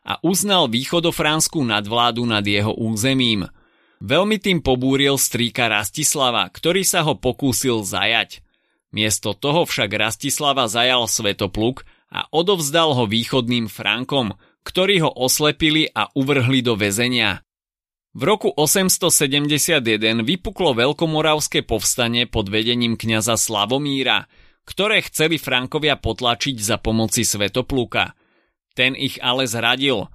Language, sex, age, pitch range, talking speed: Slovak, male, 30-49, 115-155 Hz, 110 wpm